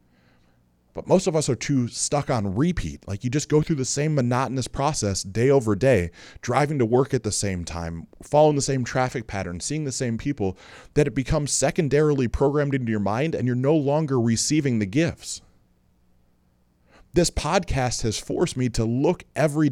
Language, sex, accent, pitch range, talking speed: English, male, American, 100-140 Hz, 185 wpm